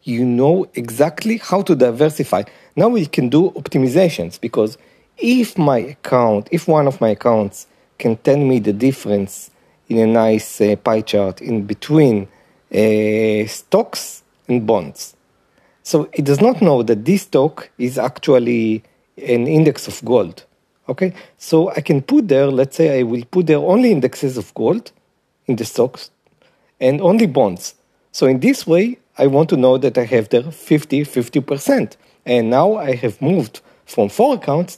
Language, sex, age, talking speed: English, male, 40-59, 165 wpm